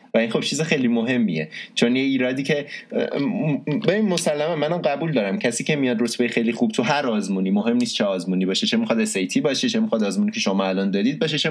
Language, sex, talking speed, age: Persian, male, 215 wpm, 20-39